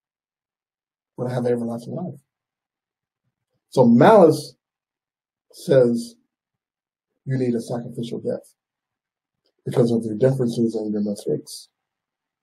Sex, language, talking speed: male, English, 100 wpm